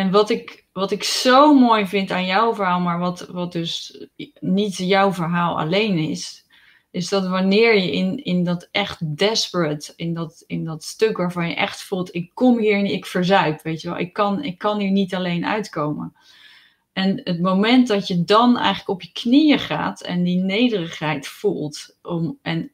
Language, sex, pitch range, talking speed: Dutch, female, 170-210 Hz, 190 wpm